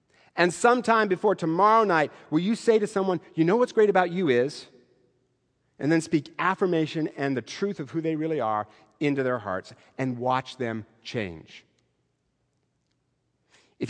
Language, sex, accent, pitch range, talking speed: English, male, American, 140-195 Hz, 160 wpm